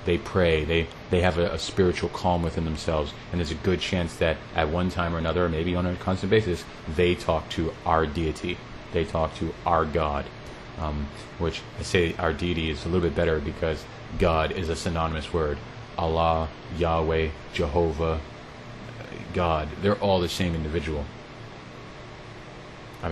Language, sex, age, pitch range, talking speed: English, male, 30-49, 80-90 Hz, 170 wpm